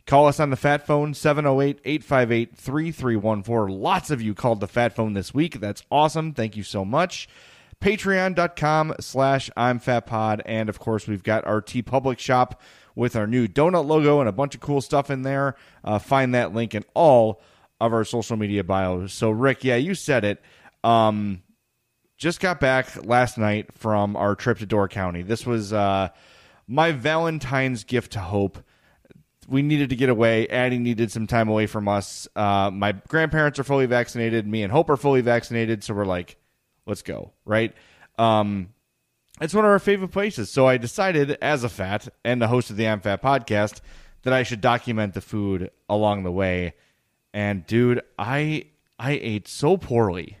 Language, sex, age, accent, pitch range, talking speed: English, male, 30-49, American, 105-140 Hz, 185 wpm